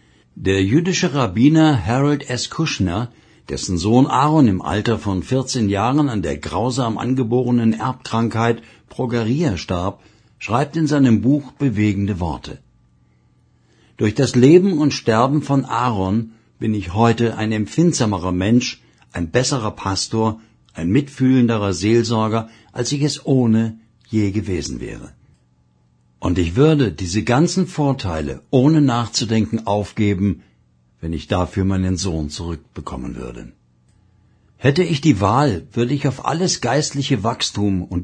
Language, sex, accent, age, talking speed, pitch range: German, male, German, 60-79, 125 wpm, 100-135 Hz